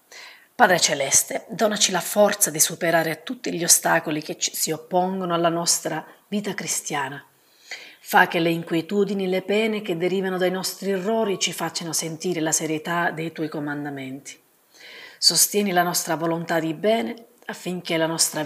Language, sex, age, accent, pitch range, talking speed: Italian, female, 40-59, native, 160-195 Hz, 155 wpm